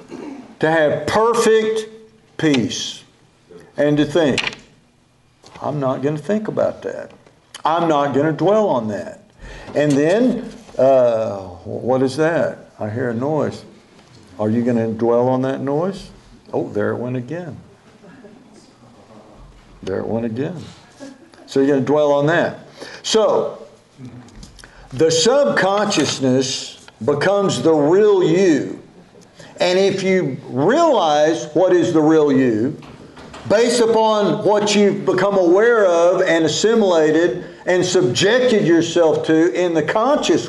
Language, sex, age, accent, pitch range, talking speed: English, male, 60-79, American, 135-205 Hz, 130 wpm